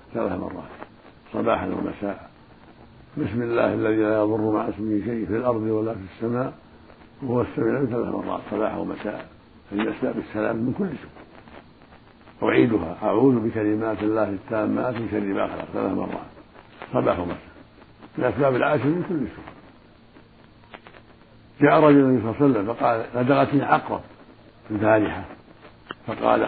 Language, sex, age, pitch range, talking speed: Arabic, male, 60-79, 110-130 Hz, 125 wpm